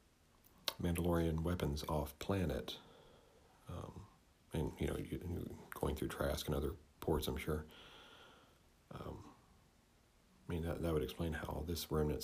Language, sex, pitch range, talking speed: English, male, 75-90 Hz, 130 wpm